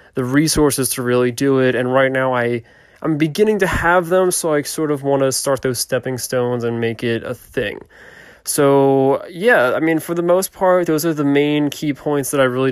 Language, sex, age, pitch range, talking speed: English, male, 20-39, 125-150 Hz, 215 wpm